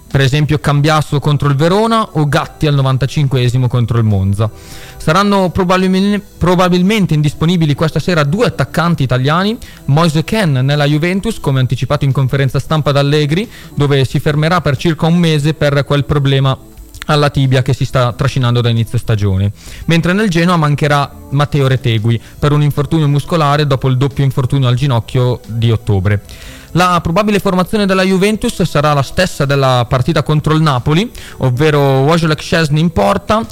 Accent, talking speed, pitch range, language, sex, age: native, 155 wpm, 130-170 Hz, Italian, male, 20-39